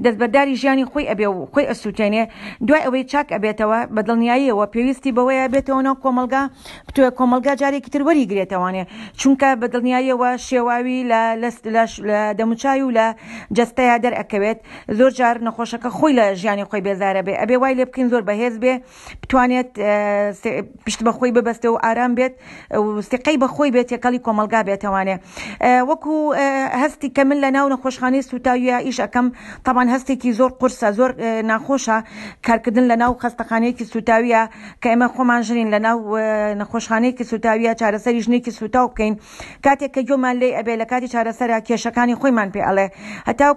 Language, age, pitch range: Turkish, 40-59, 220-255 Hz